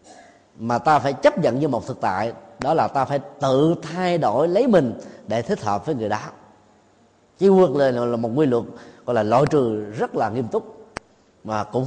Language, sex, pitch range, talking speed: Vietnamese, male, 120-180 Hz, 200 wpm